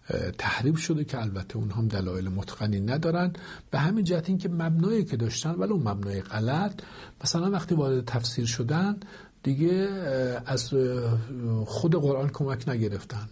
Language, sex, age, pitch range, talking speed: Persian, male, 50-69, 110-165 Hz, 140 wpm